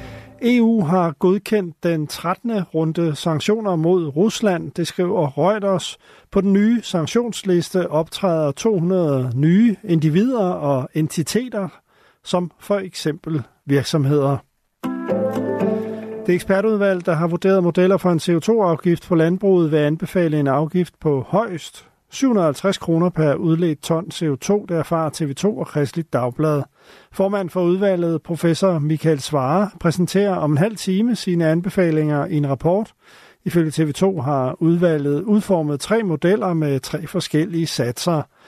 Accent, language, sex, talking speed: native, Danish, male, 130 wpm